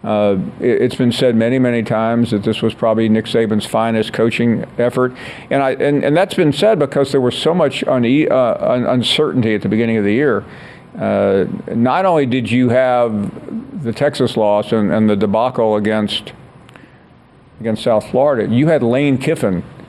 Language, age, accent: English, 50-69, American